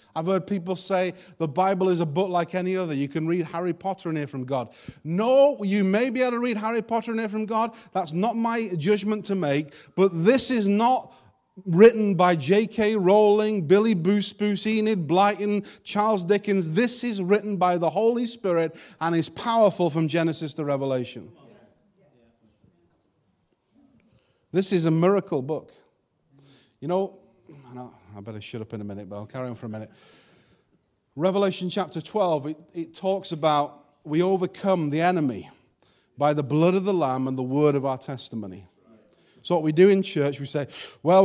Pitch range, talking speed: 145-200 Hz, 180 wpm